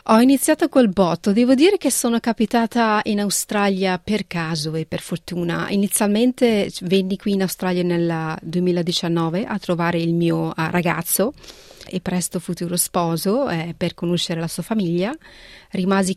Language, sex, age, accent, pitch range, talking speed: Italian, female, 30-49, native, 170-200 Hz, 145 wpm